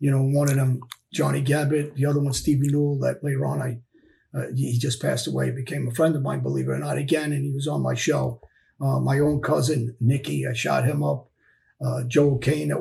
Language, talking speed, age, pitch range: English, 235 wpm, 40-59, 125-150 Hz